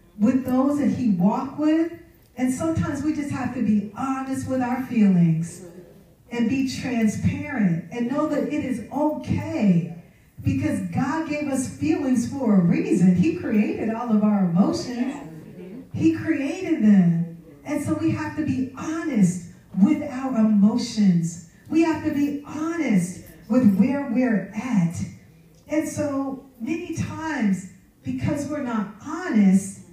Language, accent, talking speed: English, American, 140 wpm